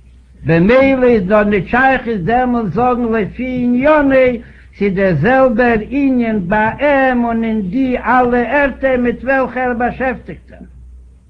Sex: male